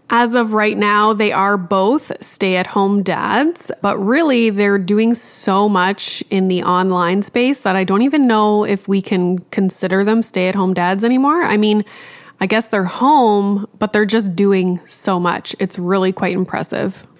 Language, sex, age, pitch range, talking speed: English, female, 20-39, 190-230 Hz, 170 wpm